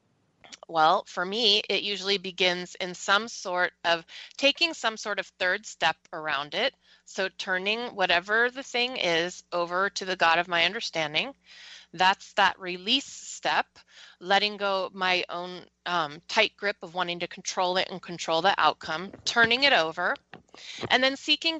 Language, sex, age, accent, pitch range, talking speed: English, female, 30-49, American, 180-215 Hz, 160 wpm